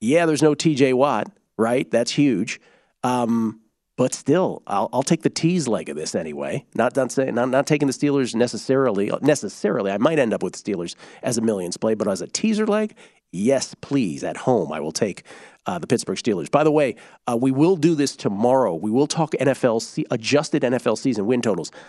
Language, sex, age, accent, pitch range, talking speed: English, male, 40-59, American, 115-145 Hz, 210 wpm